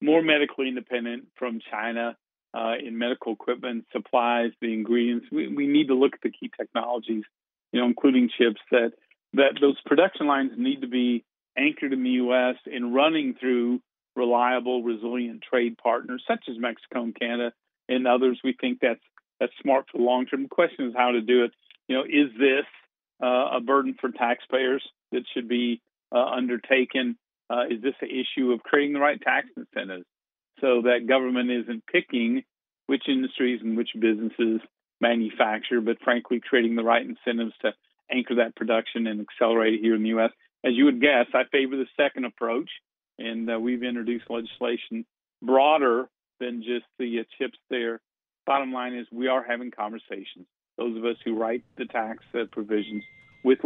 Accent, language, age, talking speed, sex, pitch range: American, English, 50-69, 175 wpm, male, 115-130 Hz